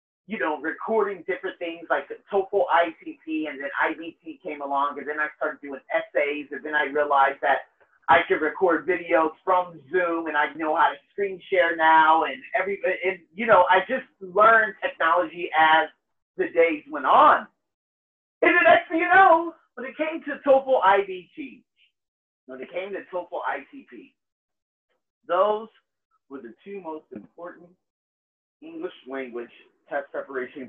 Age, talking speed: 30-49, 155 wpm